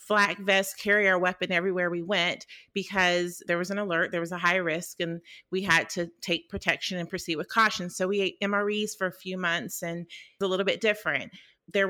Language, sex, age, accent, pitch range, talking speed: English, female, 30-49, American, 180-215 Hz, 220 wpm